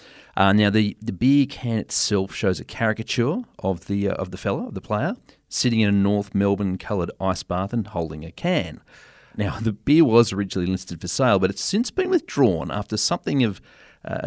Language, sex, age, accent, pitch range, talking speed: English, male, 40-59, Australian, 95-120 Hz, 200 wpm